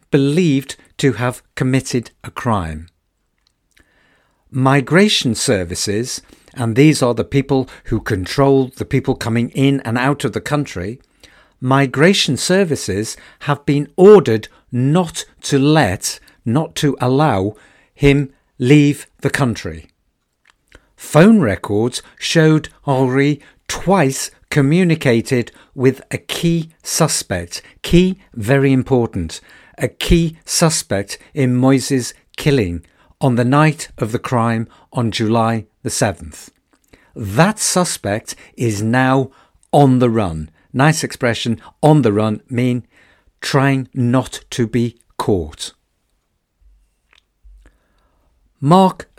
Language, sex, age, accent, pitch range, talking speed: English, male, 50-69, British, 115-145 Hz, 105 wpm